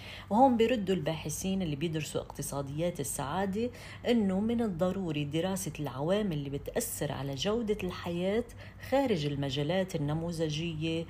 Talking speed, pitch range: 110 wpm, 150-190 Hz